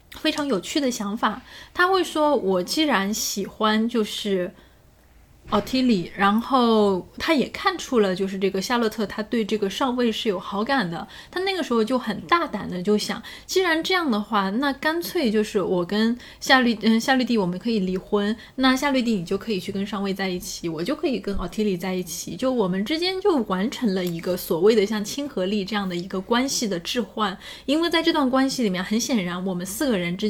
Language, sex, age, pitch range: Chinese, female, 10-29, 195-265 Hz